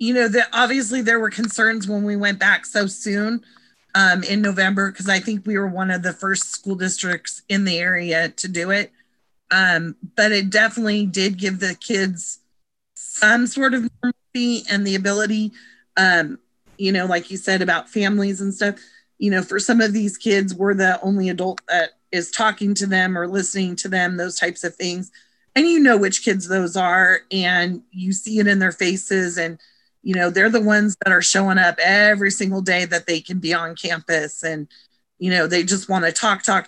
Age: 30-49